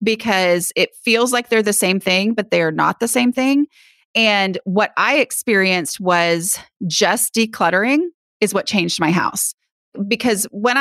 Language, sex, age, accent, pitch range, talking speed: English, female, 30-49, American, 180-235 Hz, 155 wpm